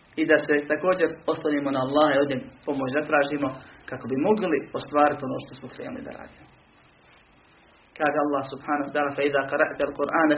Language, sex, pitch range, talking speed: Croatian, male, 135-150 Hz, 175 wpm